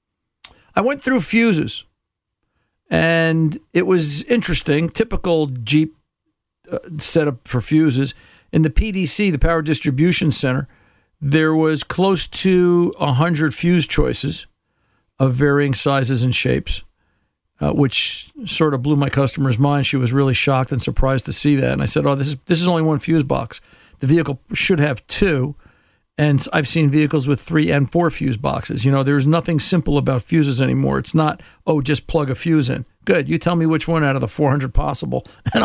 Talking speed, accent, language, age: 175 wpm, American, English, 50-69